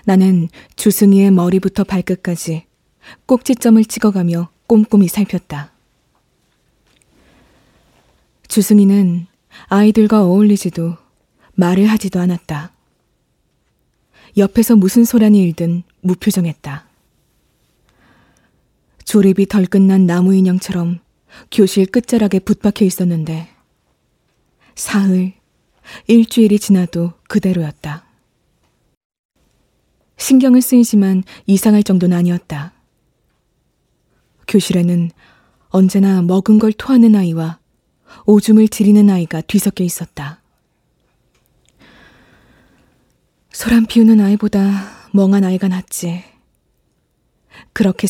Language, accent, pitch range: Korean, native, 175-210 Hz